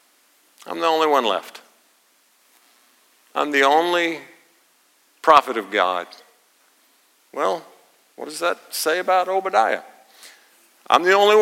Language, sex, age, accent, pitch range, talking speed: English, male, 50-69, American, 135-180 Hz, 110 wpm